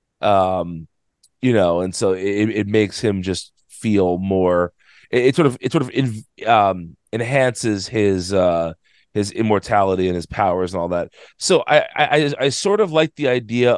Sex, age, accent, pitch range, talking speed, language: male, 30-49, American, 95-120 Hz, 180 wpm, English